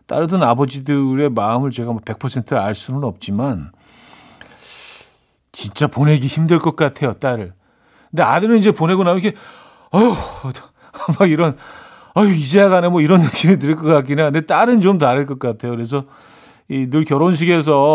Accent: native